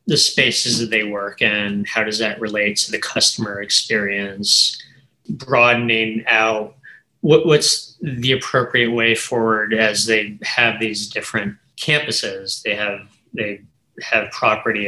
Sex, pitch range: male, 105-115 Hz